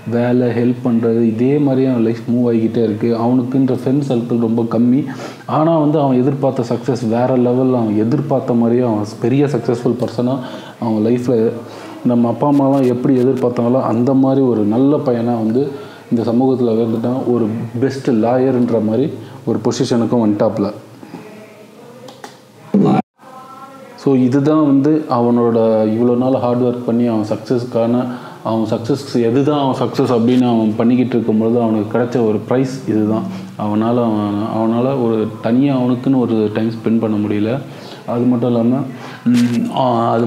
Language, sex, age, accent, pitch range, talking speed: Tamil, male, 30-49, native, 115-130 Hz, 140 wpm